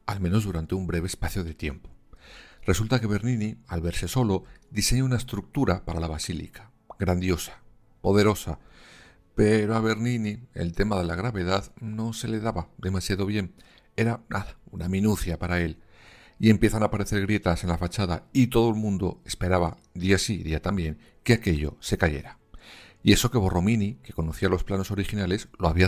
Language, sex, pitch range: Spanish, male, 85-115 Hz